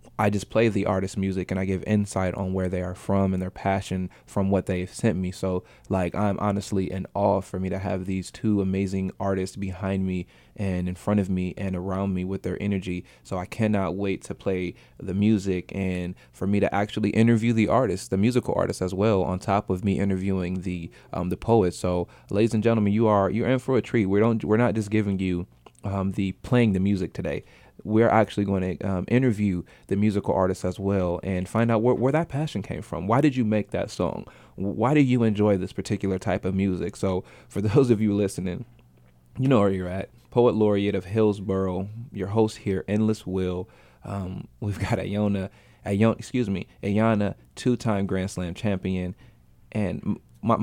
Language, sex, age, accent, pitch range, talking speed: English, male, 20-39, American, 95-110 Hz, 205 wpm